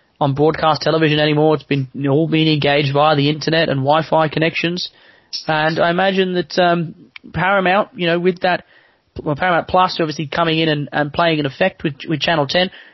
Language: English